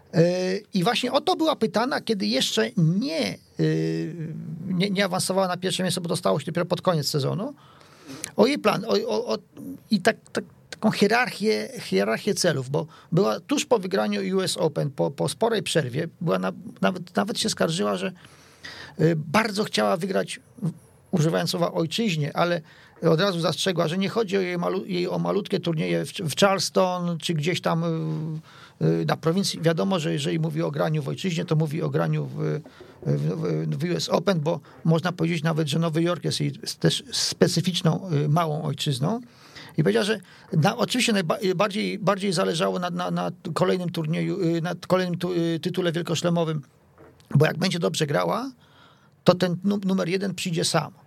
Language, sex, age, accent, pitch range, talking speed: Polish, male, 40-59, native, 155-195 Hz, 160 wpm